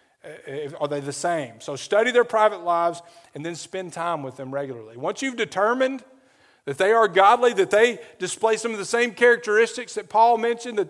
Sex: male